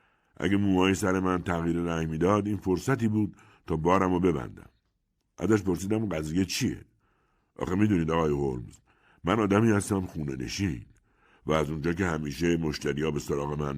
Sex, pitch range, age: male, 85-115 Hz, 60-79